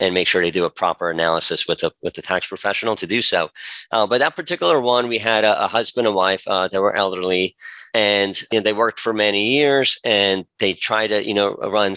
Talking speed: 240 wpm